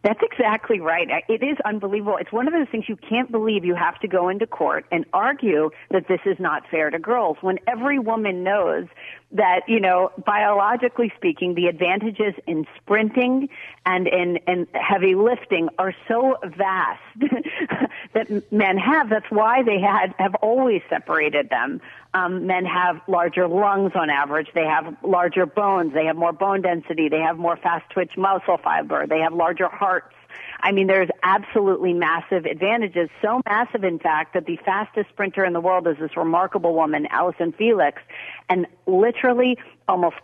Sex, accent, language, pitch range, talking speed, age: female, American, English, 175-225 Hz, 170 wpm, 40-59